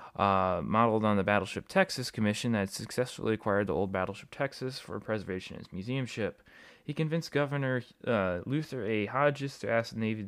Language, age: English, 20-39